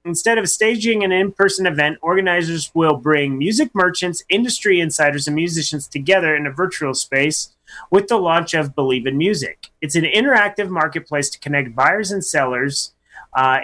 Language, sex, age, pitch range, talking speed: English, male, 30-49, 145-190 Hz, 165 wpm